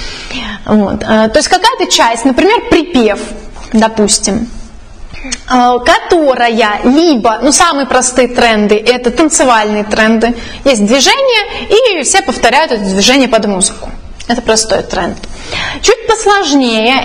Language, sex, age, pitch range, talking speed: Russian, female, 20-39, 235-355 Hz, 105 wpm